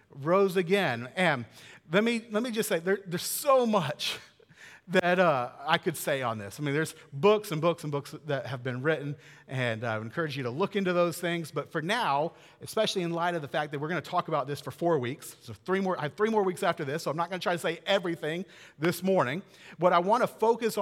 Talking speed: 250 wpm